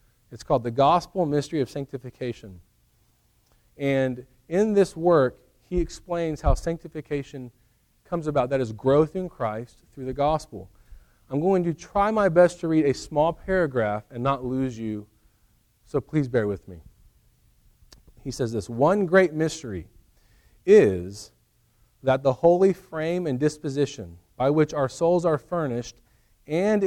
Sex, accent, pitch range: male, American, 115-165 Hz